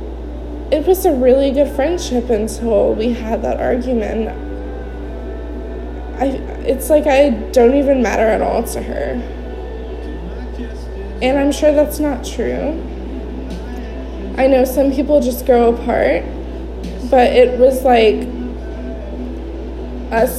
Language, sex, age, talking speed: English, female, 20-39, 120 wpm